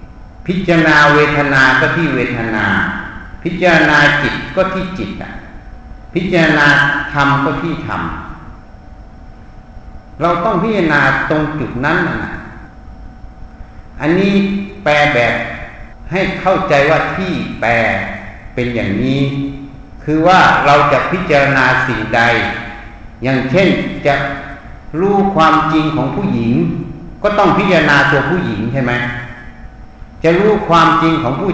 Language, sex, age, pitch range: Thai, male, 60-79, 110-165 Hz